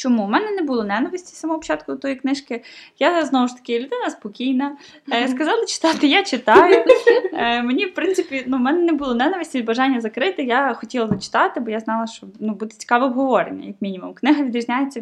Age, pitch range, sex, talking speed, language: 20-39, 220-275 Hz, female, 190 wpm, Ukrainian